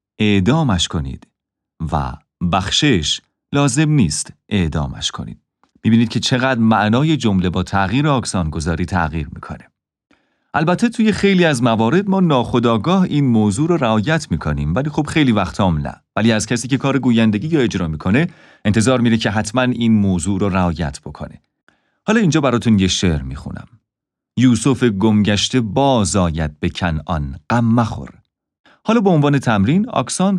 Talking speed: 140 wpm